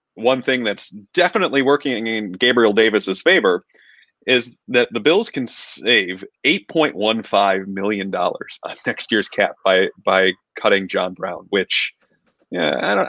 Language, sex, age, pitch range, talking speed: English, male, 30-49, 105-150 Hz, 140 wpm